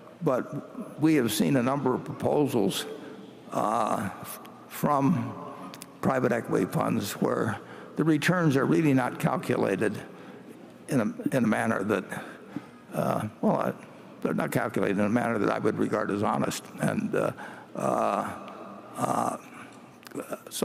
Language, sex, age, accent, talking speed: English, male, 60-79, American, 130 wpm